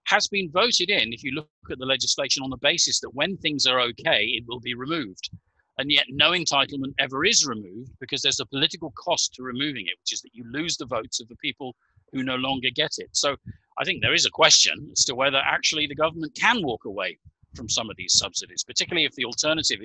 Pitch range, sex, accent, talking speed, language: 120-150 Hz, male, British, 235 wpm, English